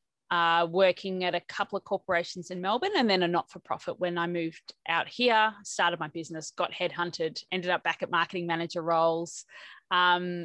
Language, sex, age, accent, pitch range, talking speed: English, female, 20-39, Australian, 170-195 Hz, 180 wpm